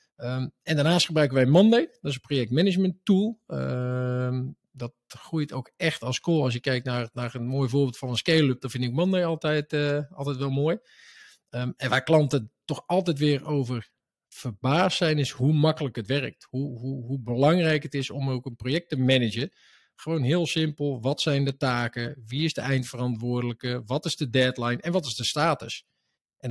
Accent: Dutch